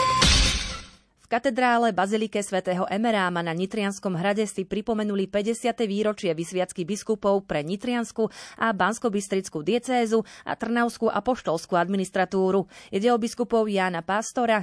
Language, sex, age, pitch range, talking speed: Slovak, female, 30-49, 185-230 Hz, 115 wpm